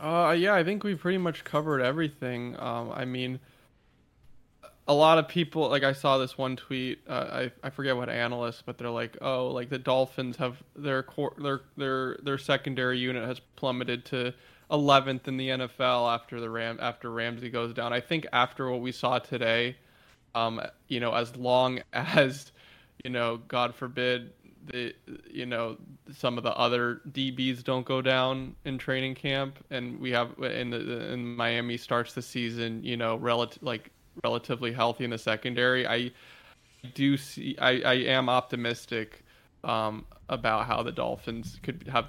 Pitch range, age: 120-135 Hz, 20-39